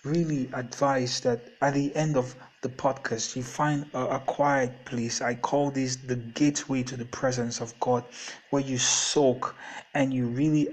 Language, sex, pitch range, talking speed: English, male, 125-145 Hz, 175 wpm